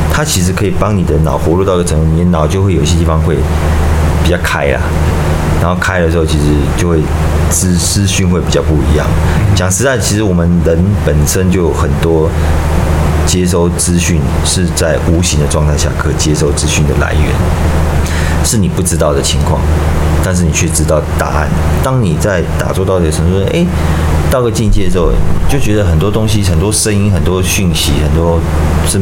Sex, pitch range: male, 75-90 Hz